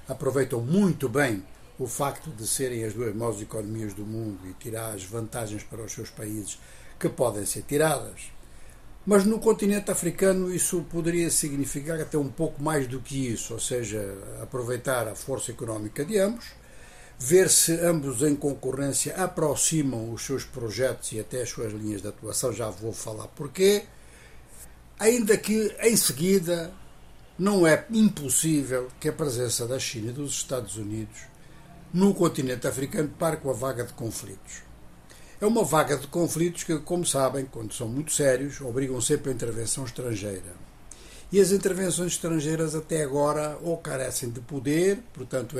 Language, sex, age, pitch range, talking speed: Portuguese, male, 60-79, 120-160 Hz, 160 wpm